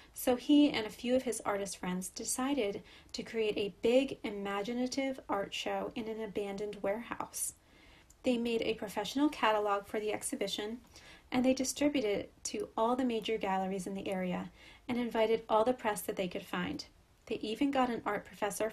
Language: English